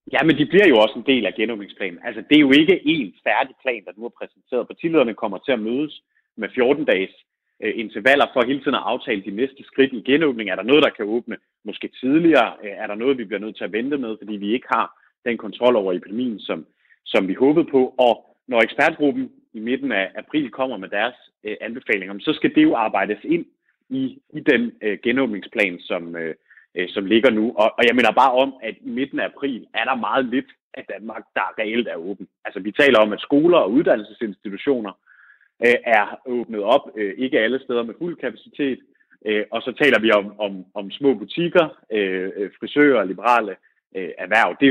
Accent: native